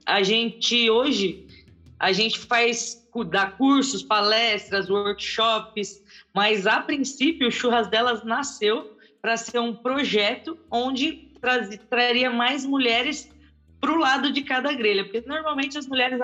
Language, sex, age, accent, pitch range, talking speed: Portuguese, female, 20-39, Brazilian, 205-255 Hz, 130 wpm